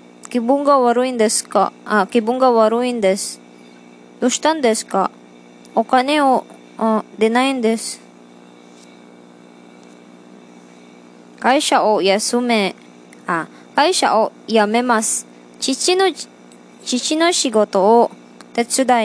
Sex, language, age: male, Japanese, 20-39